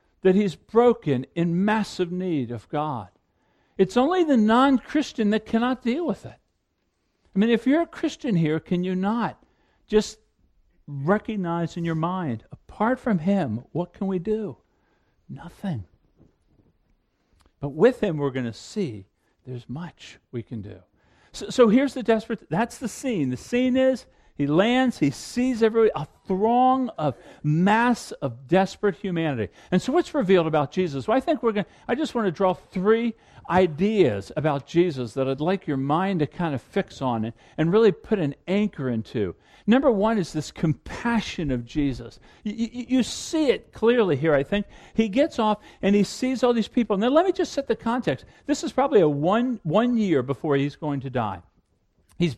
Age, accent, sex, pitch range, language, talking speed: 50-69, American, male, 145-230 Hz, English, 180 wpm